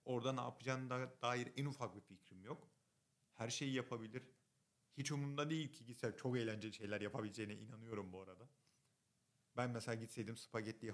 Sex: male